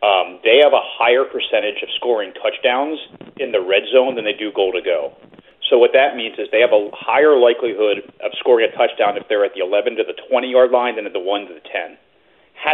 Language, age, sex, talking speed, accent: English, 40-59, male, 200 wpm, American